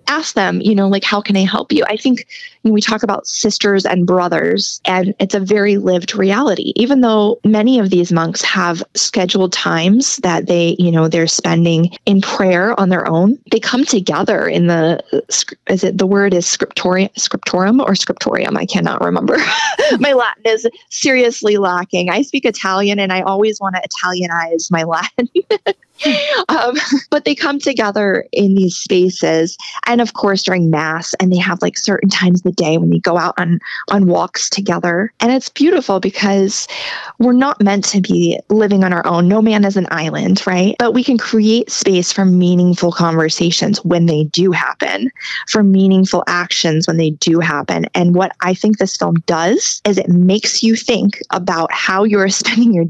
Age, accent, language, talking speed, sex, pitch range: 20-39, American, English, 185 wpm, female, 180-225 Hz